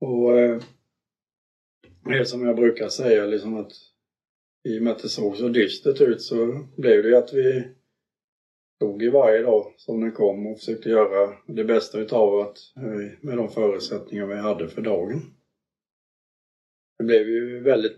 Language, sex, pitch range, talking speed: Swedish, male, 105-120 Hz, 170 wpm